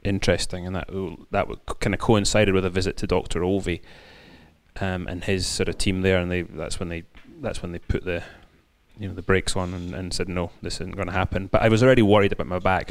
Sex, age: male, 30-49